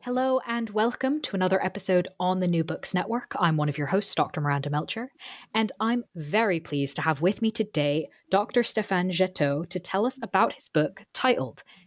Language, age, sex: English, 20-39, female